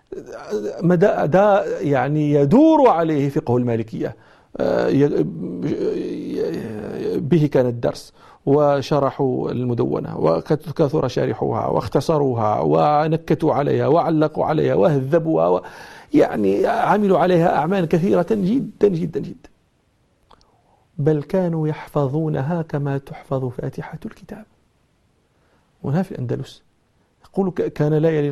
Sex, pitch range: male, 130-170 Hz